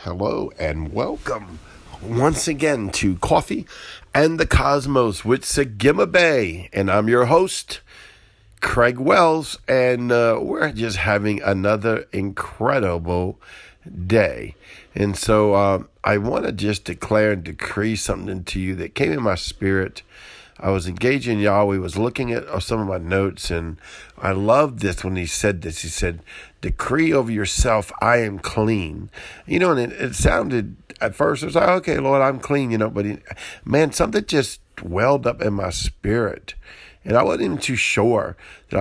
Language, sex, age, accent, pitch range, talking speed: English, male, 50-69, American, 95-120 Hz, 165 wpm